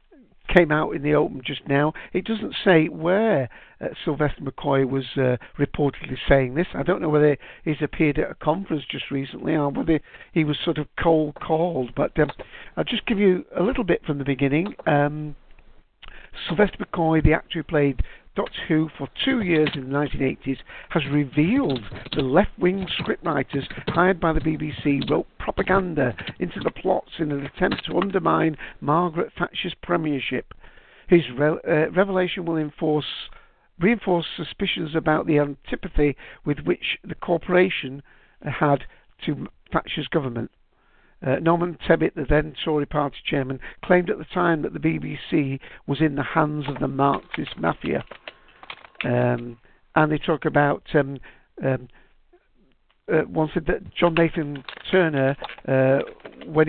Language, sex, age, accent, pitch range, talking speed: English, male, 50-69, British, 140-165 Hz, 150 wpm